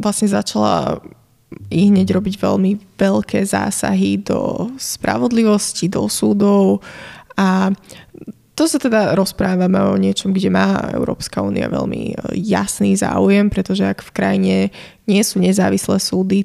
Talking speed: 125 wpm